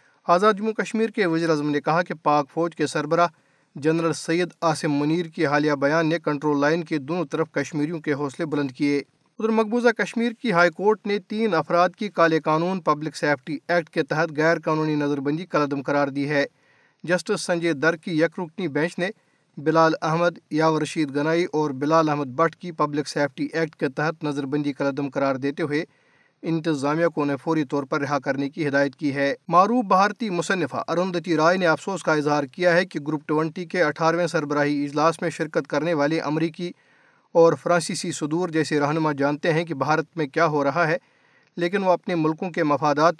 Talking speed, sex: 195 wpm, male